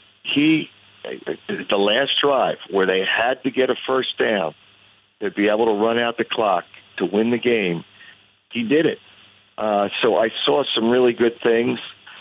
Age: 50-69